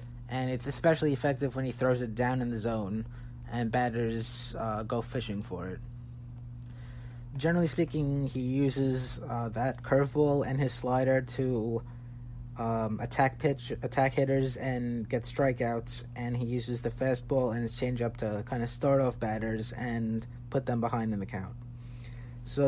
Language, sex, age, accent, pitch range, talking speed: English, male, 30-49, American, 120-135 Hz, 160 wpm